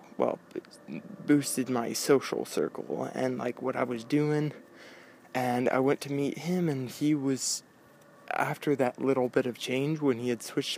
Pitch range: 130-155 Hz